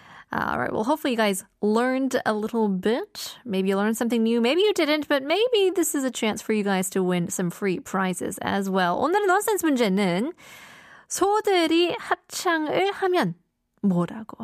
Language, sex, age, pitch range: Korean, female, 20-39, 205-315 Hz